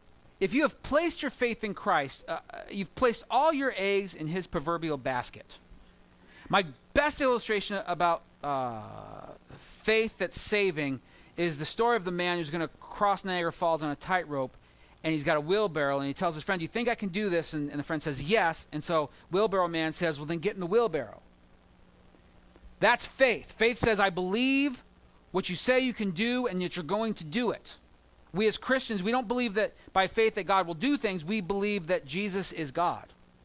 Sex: male